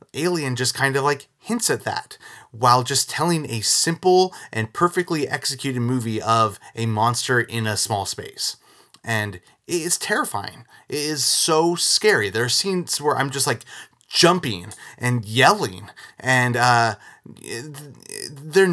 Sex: male